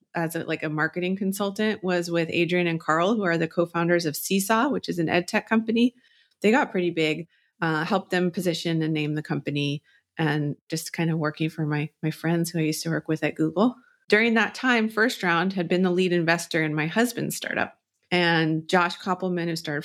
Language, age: English, 30-49